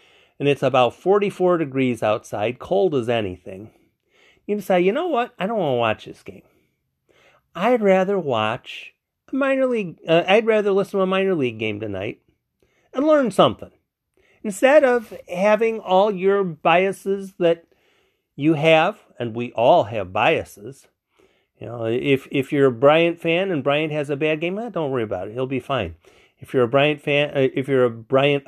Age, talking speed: 40-59, 180 wpm